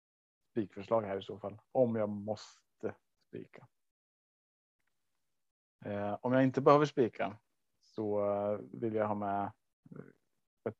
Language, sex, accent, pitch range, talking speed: Swedish, male, Norwegian, 105-120 Hz, 115 wpm